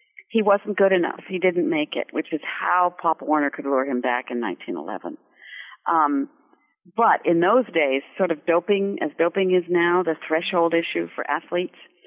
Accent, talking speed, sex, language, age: American, 180 wpm, female, English, 50-69